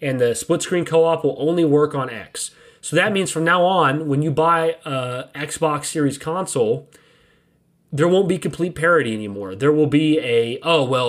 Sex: male